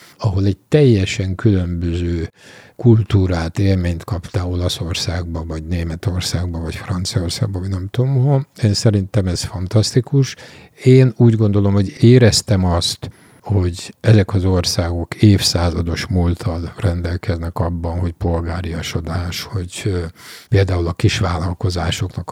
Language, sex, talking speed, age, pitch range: Hungarian, male, 110 wpm, 50-69, 90-115 Hz